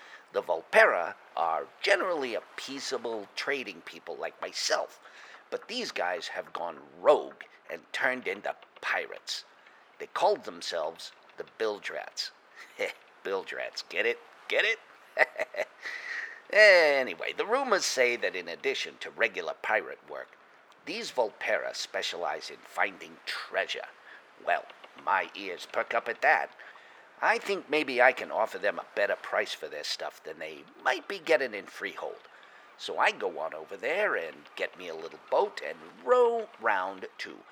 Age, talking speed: 50-69, 145 wpm